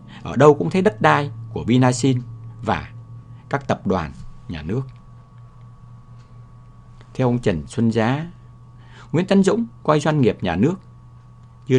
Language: English